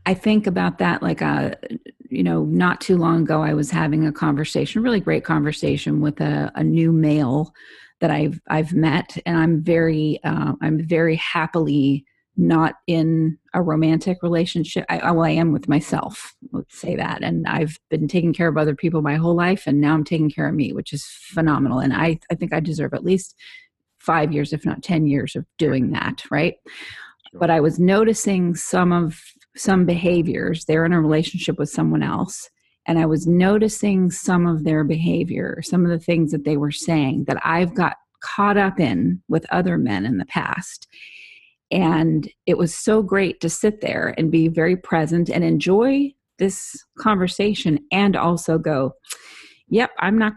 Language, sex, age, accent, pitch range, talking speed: English, female, 30-49, American, 155-180 Hz, 185 wpm